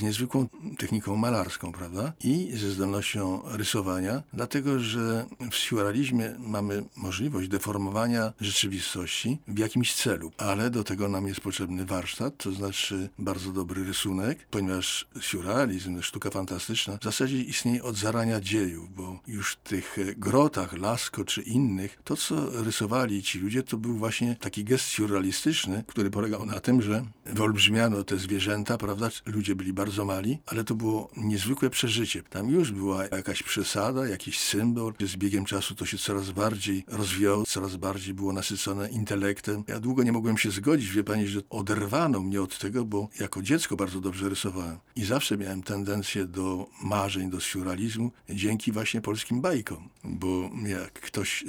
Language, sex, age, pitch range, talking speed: Polish, male, 50-69, 95-115 Hz, 155 wpm